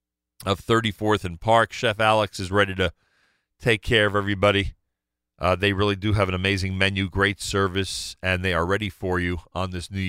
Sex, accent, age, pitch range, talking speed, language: male, American, 40-59, 90-115 Hz, 190 wpm, English